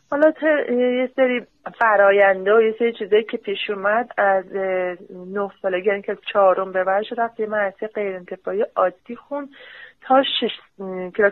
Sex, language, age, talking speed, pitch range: female, Persian, 30-49, 150 wpm, 195-240 Hz